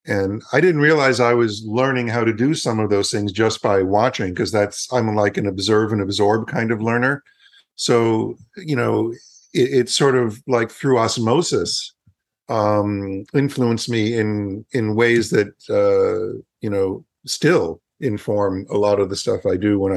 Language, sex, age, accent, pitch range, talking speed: English, male, 50-69, American, 100-125 Hz, 175 wpm